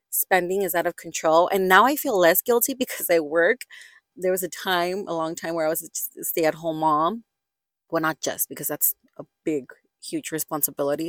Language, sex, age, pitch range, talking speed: English, female, 30-49, 165-200 Hz, 195 wpm